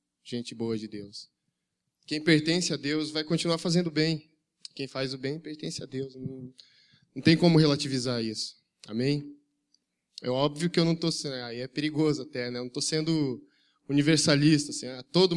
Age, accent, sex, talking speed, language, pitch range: 10-29, Brazilian, male, 185 wpm, Portuguese, 125-155 Hz